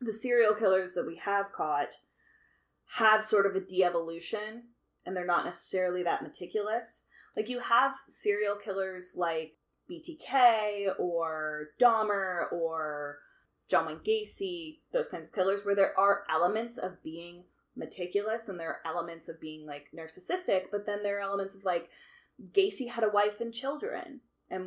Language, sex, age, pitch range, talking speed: English, female, 20-39, 180-240 Hz, 155 wpm